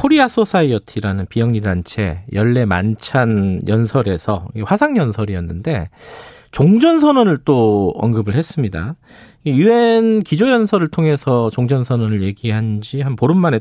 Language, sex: Korean, male